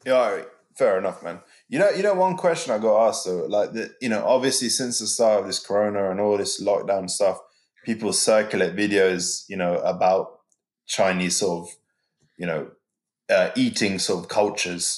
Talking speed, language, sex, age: 190 wpm, English, male, 20-39